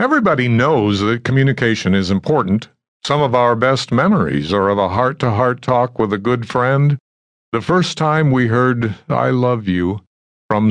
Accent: American